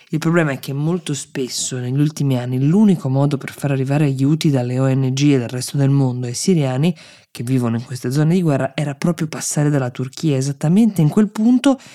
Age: 20-39